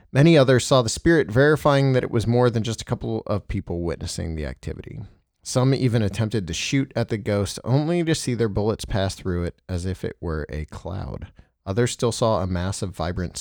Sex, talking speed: male, 215 wpm